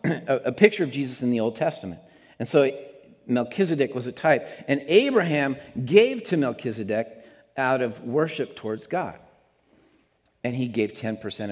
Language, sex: English, male